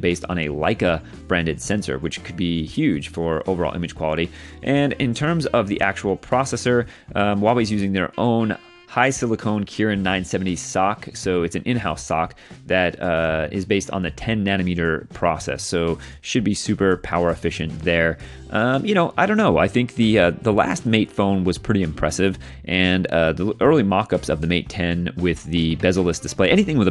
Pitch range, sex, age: 85-100 Hz, male, 30-49